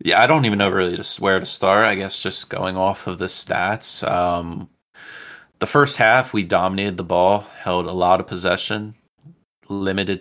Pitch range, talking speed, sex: 90-95 Hz, 190 wpm, male